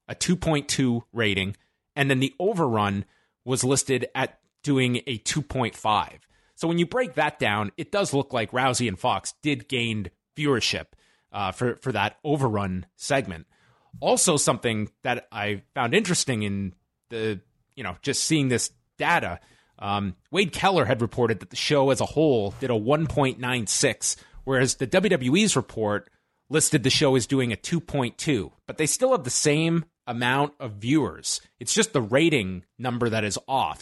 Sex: male